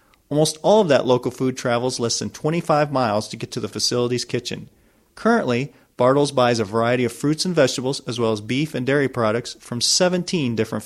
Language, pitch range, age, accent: English, 115-155 Hz, 40-59, American